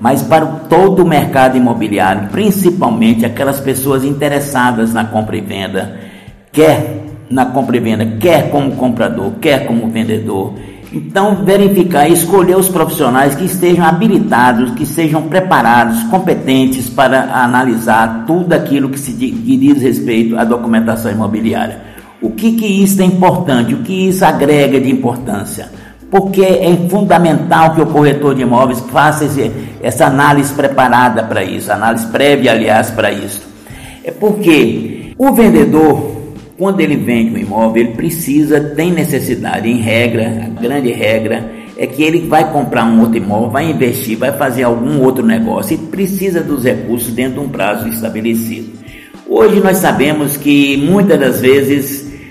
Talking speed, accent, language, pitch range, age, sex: 150 wpm, Brazilian, Portuguese, 115-170 Hz, 60-79, male